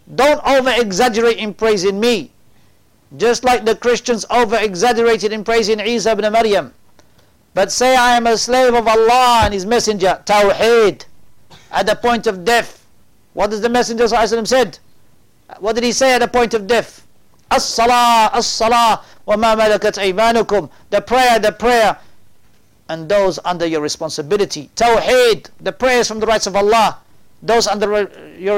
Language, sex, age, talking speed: English, male, 50-69, 160 wpm